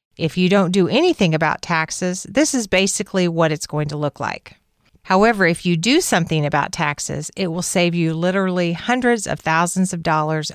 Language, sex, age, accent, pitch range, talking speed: English, female, 40-59, American, 150-190 Hz, 190 wpm